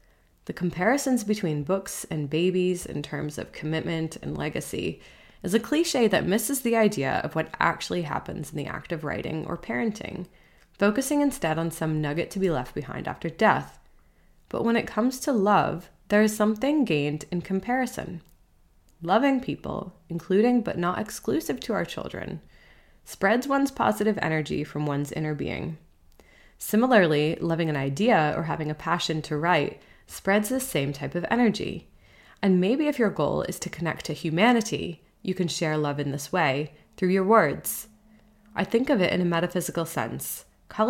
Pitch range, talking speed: 150-215 Hz, 170 wpm